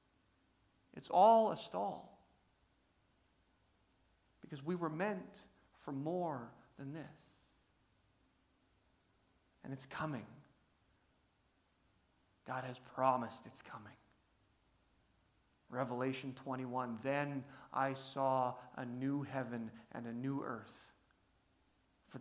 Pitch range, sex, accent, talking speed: 130-220 Hz, male, American, 90 wpm